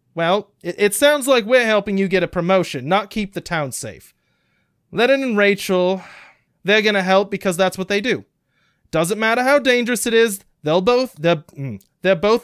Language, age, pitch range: English, 30-49, 165-215 Hz